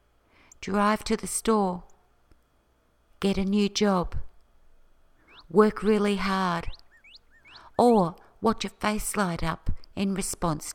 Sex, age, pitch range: female, 50-69, 165-210 Hz